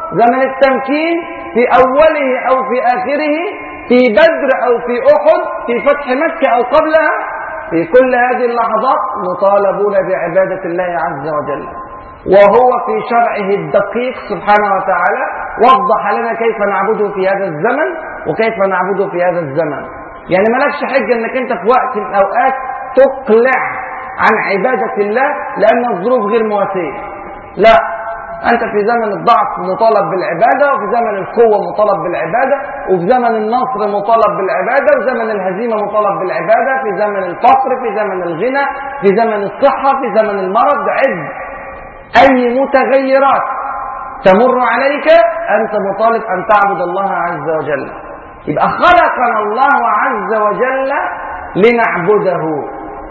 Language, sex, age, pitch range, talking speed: Arabic, male, 40-59, 200-265 Hz, 130 wpm